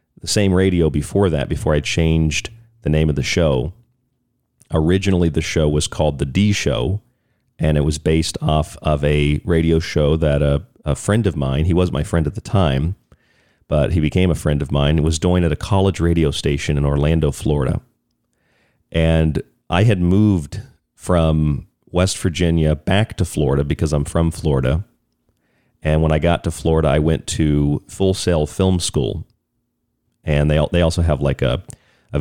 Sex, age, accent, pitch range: male, 40-59, American, 75-90 Hz